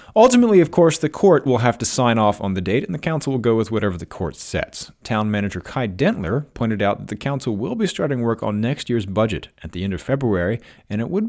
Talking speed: 255 wpm